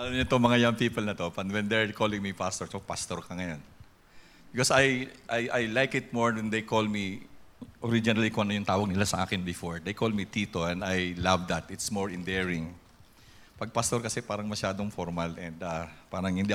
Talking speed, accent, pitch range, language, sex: 205 wpm, Filipino, 100-150 Hz, English, male